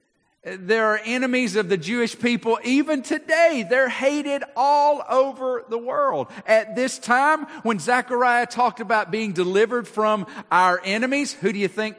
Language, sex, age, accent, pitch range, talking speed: English, male, 50-69, American, 155-235 Hz, 155 wpm